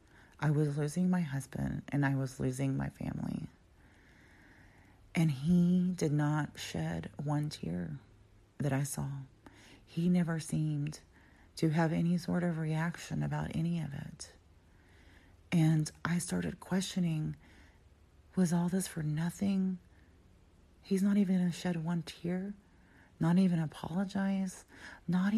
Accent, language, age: American, English, 40-59